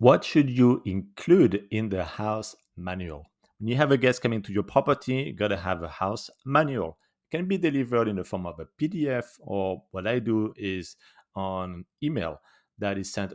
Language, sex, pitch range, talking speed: English, male, 100-125 Hz, 200 wpm